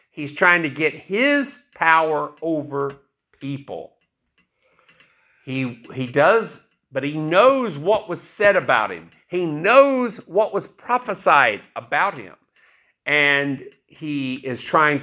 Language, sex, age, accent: English, male, 50-69, American